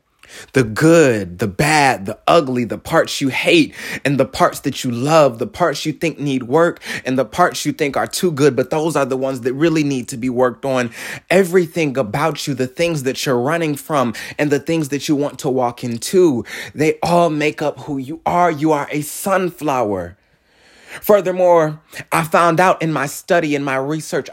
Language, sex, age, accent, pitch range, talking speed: English, male, 20-39, American, 125-160 Hz, 200 wpm